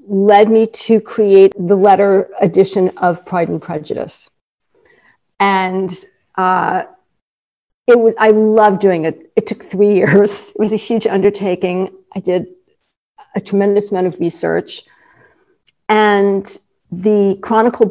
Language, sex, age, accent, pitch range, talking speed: English, female, 50-69, American, 180-215 Hz, 125 wpm